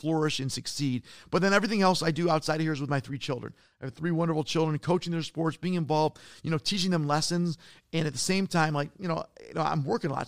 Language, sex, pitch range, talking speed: English, male, 150-175 Hz, 270 wpm